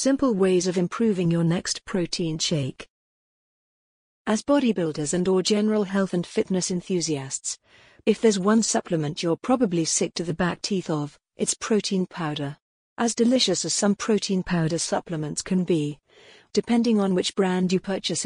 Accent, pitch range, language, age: British, 170-205 Hz, English, 40-59